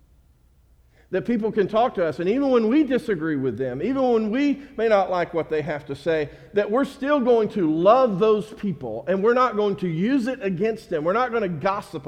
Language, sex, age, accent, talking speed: English, male, 50-69, American, 230 wpm